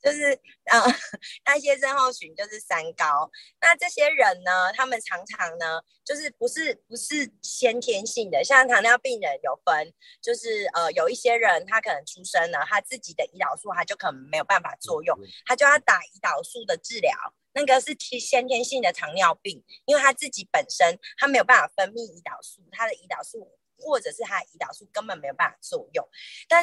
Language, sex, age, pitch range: Chinese, female, 30-49, 225-295 Hz